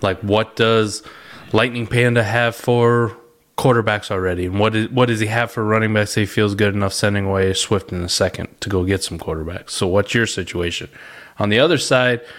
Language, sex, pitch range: English, male, 105-130 Hz